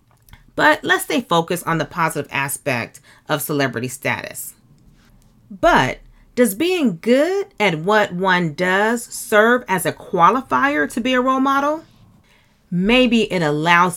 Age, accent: 40-59, American